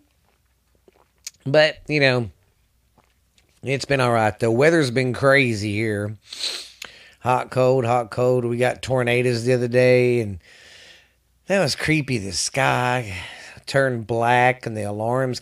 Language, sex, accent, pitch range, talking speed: English, male, American, 105-140 Hz, 125 wpm